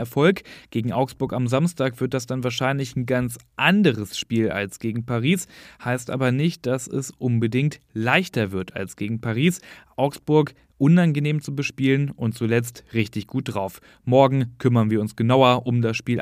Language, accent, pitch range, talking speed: German, German, 120-155 Hz, 165 wpm